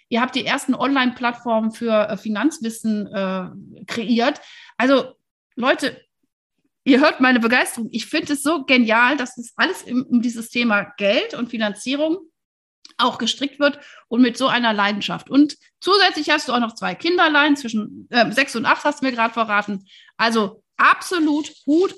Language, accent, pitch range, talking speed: German, German, 215-280 Hz, 165 wpm